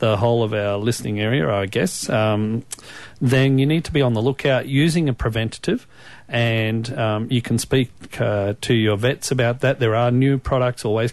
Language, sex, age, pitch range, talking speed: English, male, 40-59, 110-135 Hz, 195 wpm